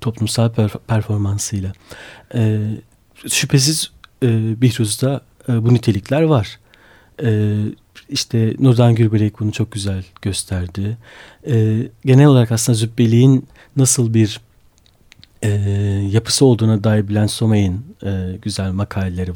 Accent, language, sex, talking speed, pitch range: native, Turkish, male, 105 wpm, 100-135 Hz